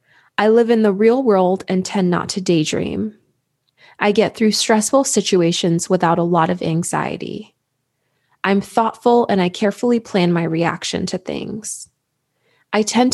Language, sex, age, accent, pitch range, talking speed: English, female, 20-39, American, 170-215 Hz, 150 wpm